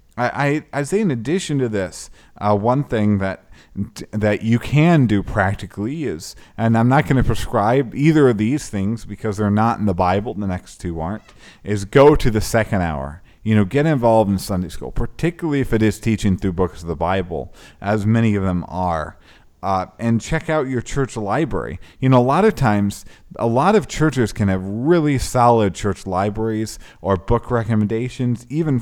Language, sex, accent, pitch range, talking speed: English, male, American, 95-125 Hz, 195 wpm